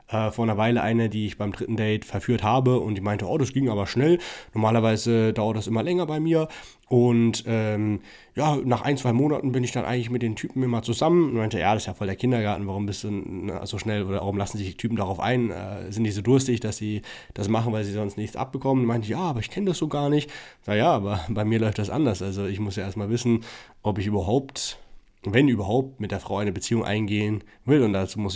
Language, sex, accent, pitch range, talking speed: German, male, German, 105-125 Hz, 245 wpm